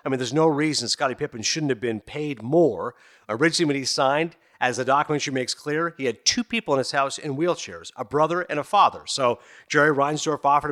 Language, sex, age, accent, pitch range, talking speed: English, male, 50-69, American, 140-190 Hz, 220 wpm